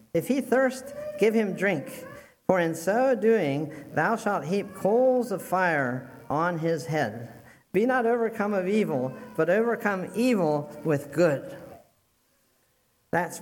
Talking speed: 135 wpm